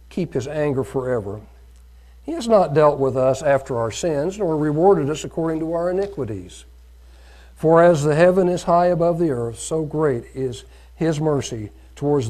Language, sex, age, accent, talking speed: English, male, 60-79, American, 170 wpm